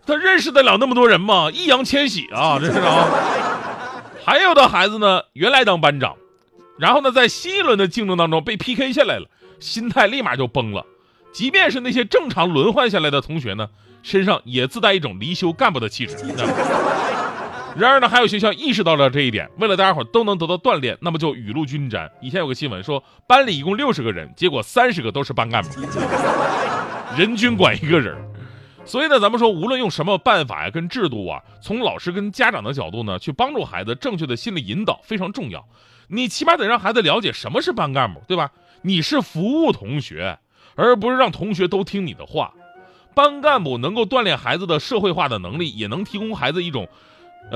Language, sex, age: Chinese, male, 30-49